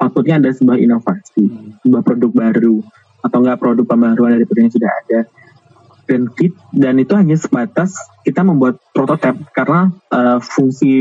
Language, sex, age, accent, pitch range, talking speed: Indonesian, male, 20-39, native, 120-150 Hz, 145 wpm